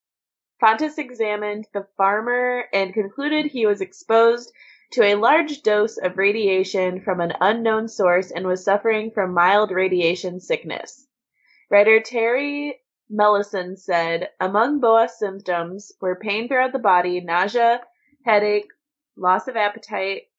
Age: 20-39